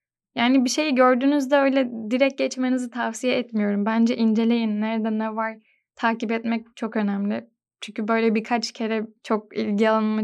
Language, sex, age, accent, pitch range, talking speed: Turkish, female, 10-29, native, 215-245 Hz, 145 wpm